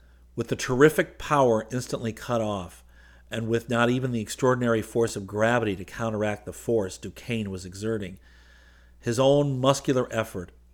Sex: male